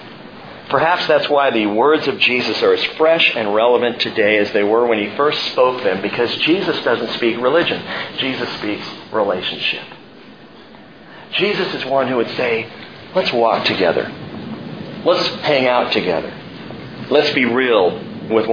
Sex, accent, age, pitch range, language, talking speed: male, American, 40-59, 135-195 Hz, English, 150 wpm